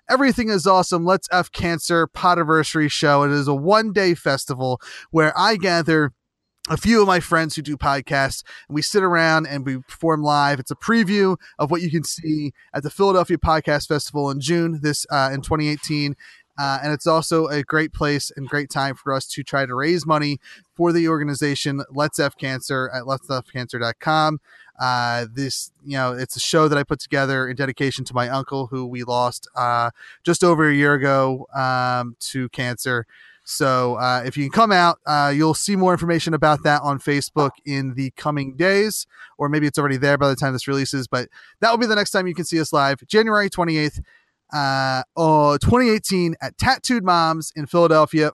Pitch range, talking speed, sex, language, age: 130-165 Hz, 195 wpm, male, English, 30-49